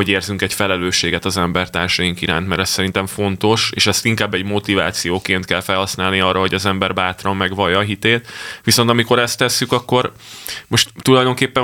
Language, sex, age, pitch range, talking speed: Hungarian, male, 20-39, 95-110 Hz, 170 wpm